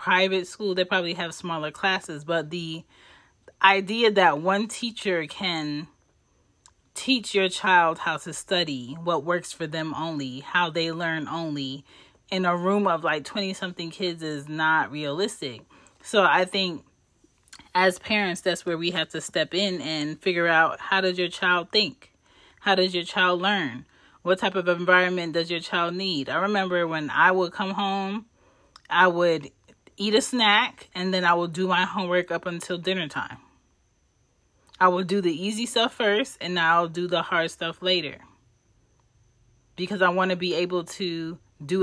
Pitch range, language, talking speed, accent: 160-190 Hz, English, 170 wpm, American